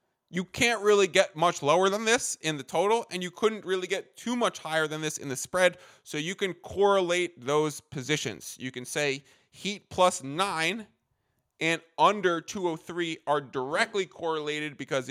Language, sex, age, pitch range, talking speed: English, male, 20-39, 145-180 Hz, 170 wpm